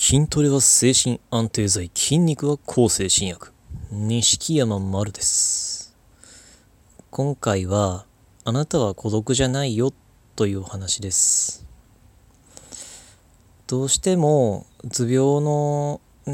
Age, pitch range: 20-39, 100-120 Hz